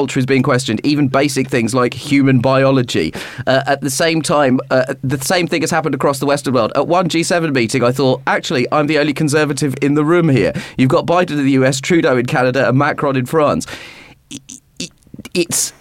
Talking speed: 200 wpm